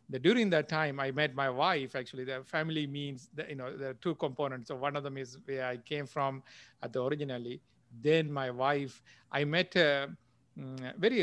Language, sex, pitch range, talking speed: English, male, 130-145 Hz, 200 wpm